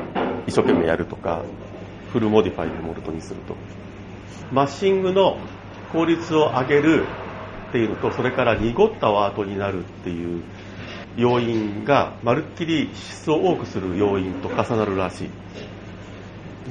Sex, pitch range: male, 100-145 Hz